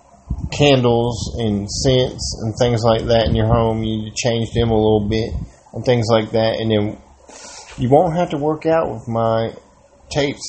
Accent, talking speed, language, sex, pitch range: American, 190 wpm, English, male, 105-125 Hz